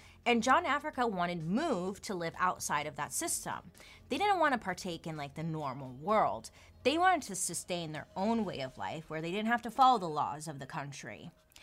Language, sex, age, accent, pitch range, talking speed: English, female, 30-49, American, 150-215 Hz, 205 wpm